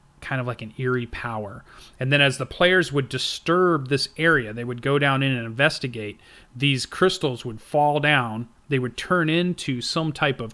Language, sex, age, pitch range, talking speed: English, male, 30-49, 120-150 Hz, 195 wpm